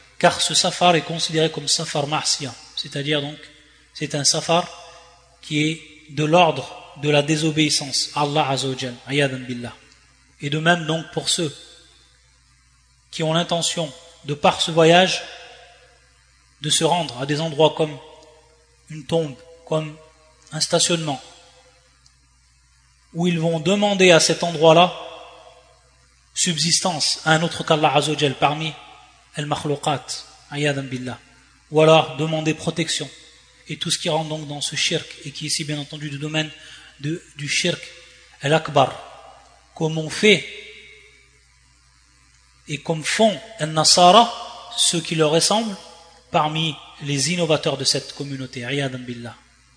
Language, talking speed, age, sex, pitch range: French, 125 wpm, 30-49, male, 130-170 Hz